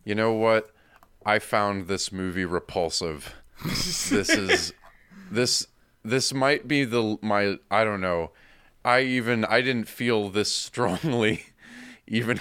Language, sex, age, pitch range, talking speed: English, male, 20-39, 85-110 Hz, 130 wpm